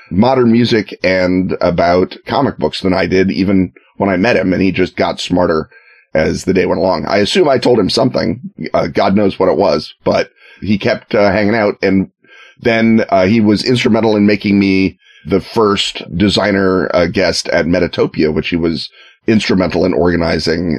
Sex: male